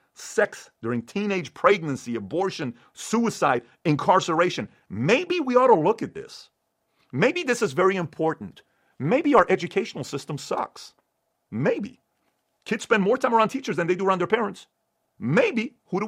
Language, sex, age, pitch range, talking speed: English, male, 40-59, 115-190 Hz, 150 wpm